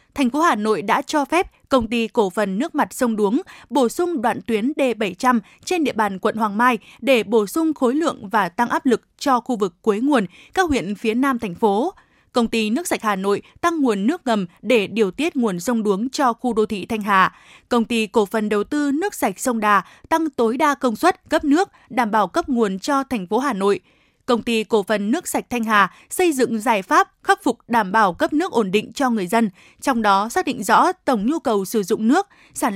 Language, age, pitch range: Vietnamese, 20-39, 220-280 Hz